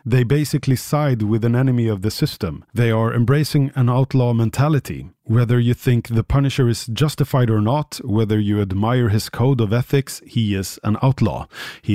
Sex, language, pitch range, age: male, Swedish, 110-150 Hz, 30-49